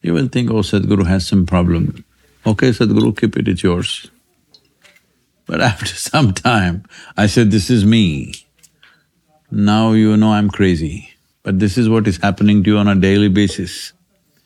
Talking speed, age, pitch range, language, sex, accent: 165 wpm, 50-69, 100-130 Hz, Romanian, male, Indian